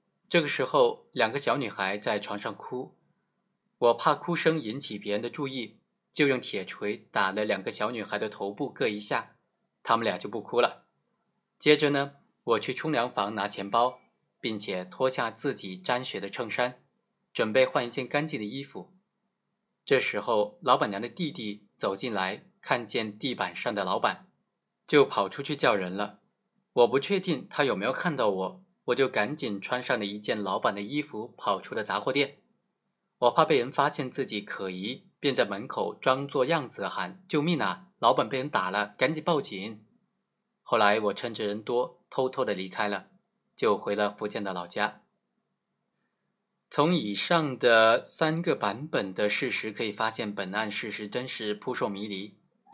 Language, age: Chinese, 20-39